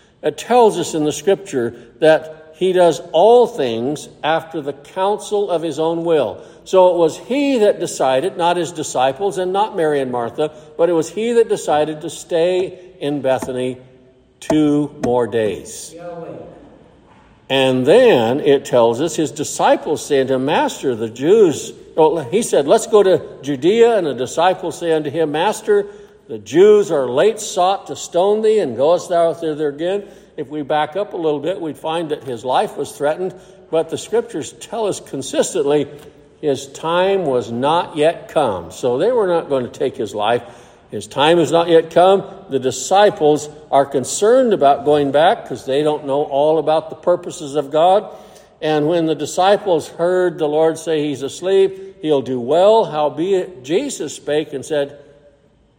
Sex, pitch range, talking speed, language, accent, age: male, 145-190 Hz, 175 wpm, English, American, 60-79